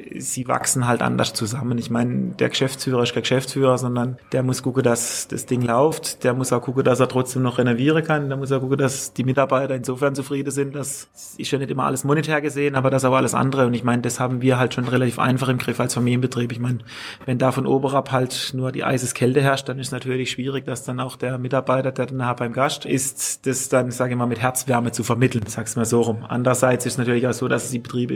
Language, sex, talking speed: German, male, 250 wpm